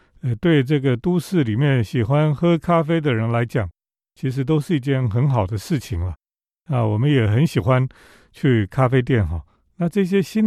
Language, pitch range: Chinese, 115-170 Hz